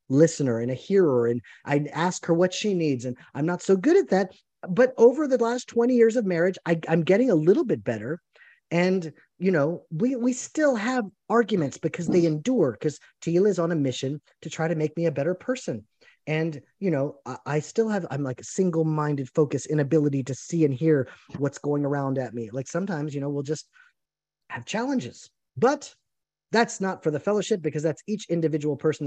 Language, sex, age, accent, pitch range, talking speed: English, male, 30-49, American, 135-190 Hz, 205 wpm